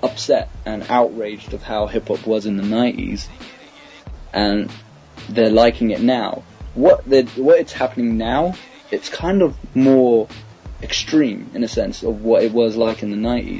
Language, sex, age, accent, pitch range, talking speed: English, male, 20-39, British, 105-130 Hz, 160 wpm